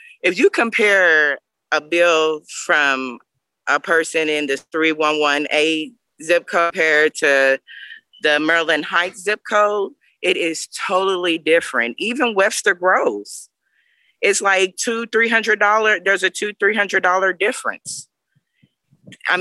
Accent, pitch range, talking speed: American, 165-230 Hz, 135 wpm